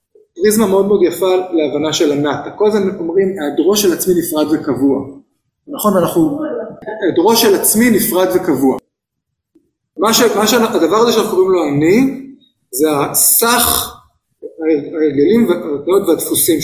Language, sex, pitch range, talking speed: Hebrew, male, 150-235 Hz, 125 wpm